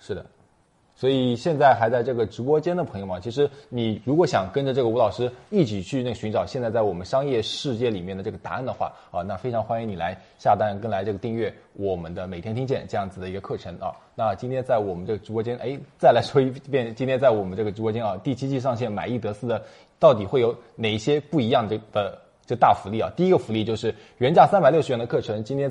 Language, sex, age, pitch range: Chinese, male, 20-39, 105-125 Hz